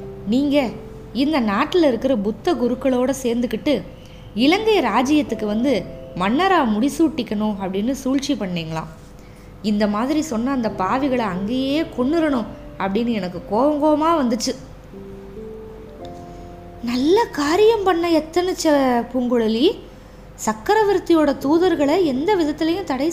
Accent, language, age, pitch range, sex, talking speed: native, Tamil, 20-39, 195-285 Hz, female, 95 wpm